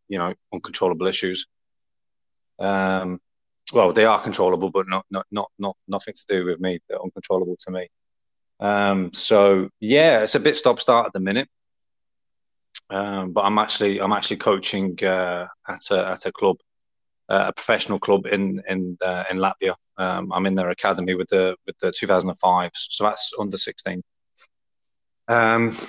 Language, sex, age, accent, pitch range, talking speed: English, male, 20-39, British, 95-105 Hz, 165 wpm